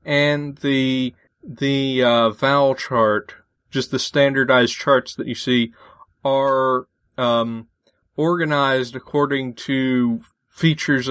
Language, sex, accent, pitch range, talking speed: English, male, American, 120-140 Hz, 105 wpm